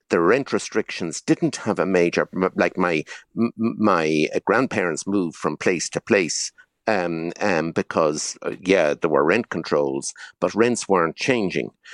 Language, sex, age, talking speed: English, male, 60-79, 145 wpm